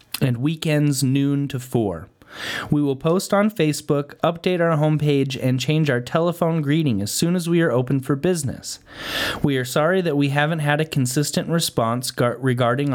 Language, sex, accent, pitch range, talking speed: English, male, American, 130-165 Hz, 170 wpm